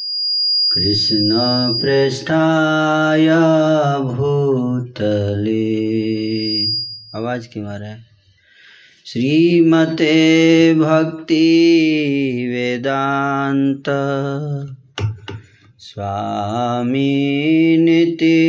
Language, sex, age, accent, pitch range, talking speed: Hindi, male, 30-49, native, 115-160 Hz, 35 wpm